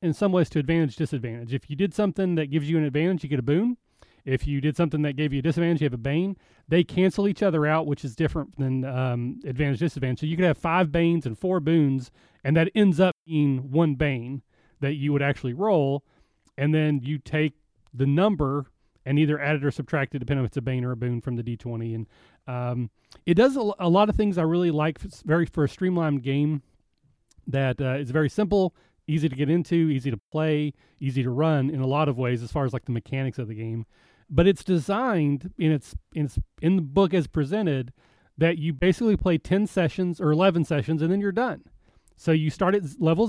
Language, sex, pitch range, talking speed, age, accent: English, male, 130-170 Hz, 230 wpm, 30-49, American